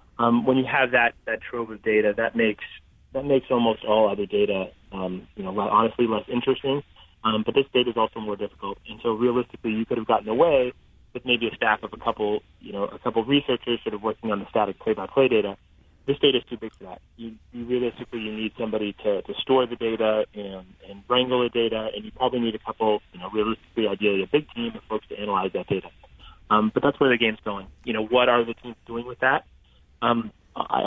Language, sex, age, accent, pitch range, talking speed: English, male, 30-49, American, 105-125 Hz, 230 wpm